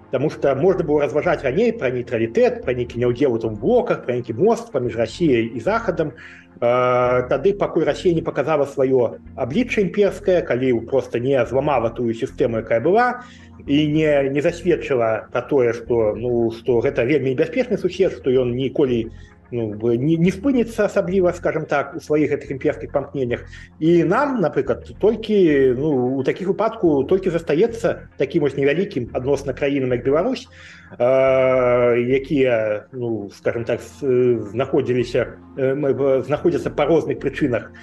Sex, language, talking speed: male, Russian, 140 wpm